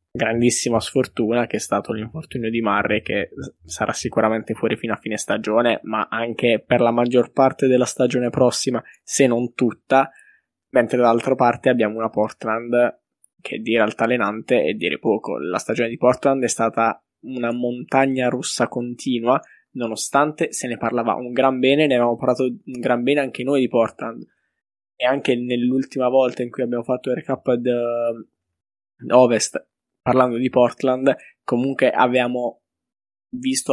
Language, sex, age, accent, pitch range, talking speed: Italian, male, 20-39, native, 115-130 Hz, 155 wpm